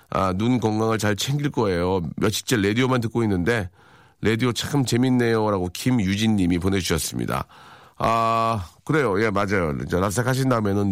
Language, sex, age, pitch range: Korean, male, 40-59, 100-140 Hz